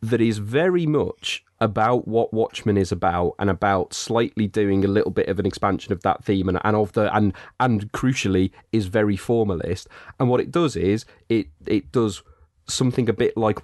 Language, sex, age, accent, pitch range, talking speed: English, male, 30-49, British, 95-115 Hz, 195 wpm